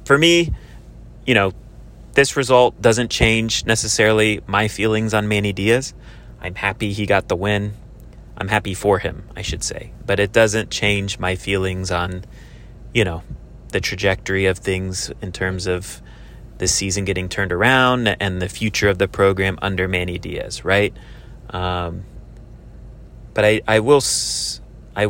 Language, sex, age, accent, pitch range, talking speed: English, male, 30-49, American, 95-110 Hz, 150 wpm